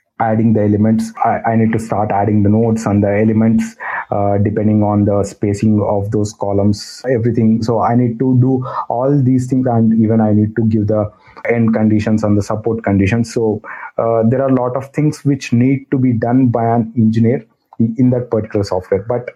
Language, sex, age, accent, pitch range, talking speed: English, male, 30-49, Indian, 105-120 Hz, 200 wpm